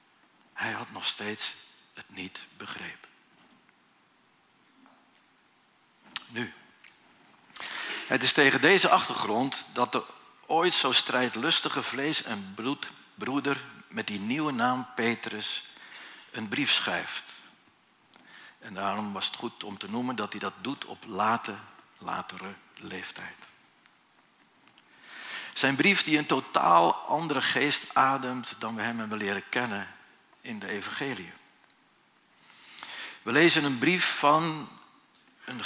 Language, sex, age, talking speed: Dutch, male, 60-79, 115 wpm